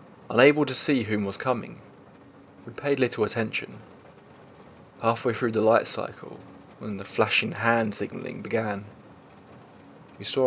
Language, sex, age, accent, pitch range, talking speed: English, male, 20-39, British, 105-120 Hz, 130 wpm